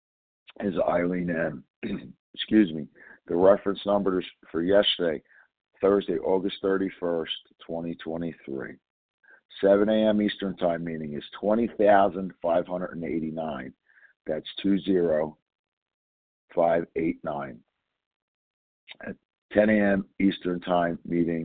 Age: 50-69